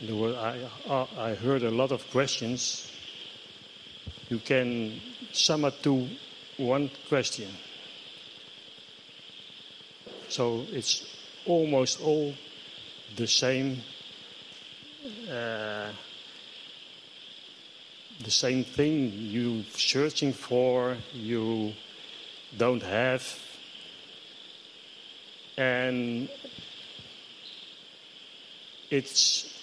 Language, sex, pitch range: Thai, male, 115-135 Hz